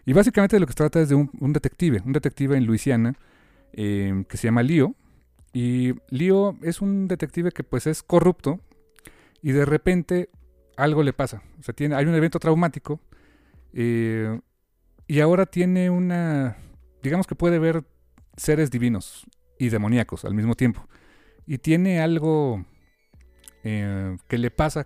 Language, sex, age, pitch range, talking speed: Spanish, male, 40-59, 105-150 Hz, 160 wpm